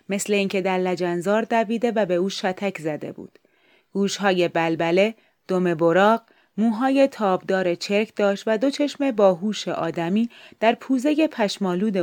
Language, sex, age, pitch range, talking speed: Persian, female, 30-49, 180-215 Hz, 135 wpm